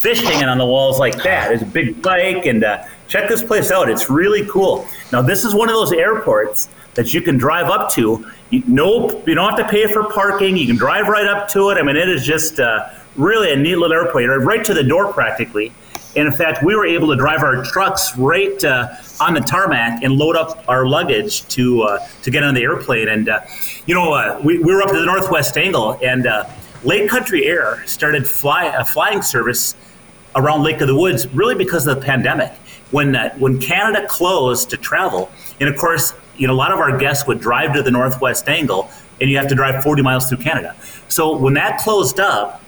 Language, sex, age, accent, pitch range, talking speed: English, male, 30-49, American, 135-190 Hz, 230 wpm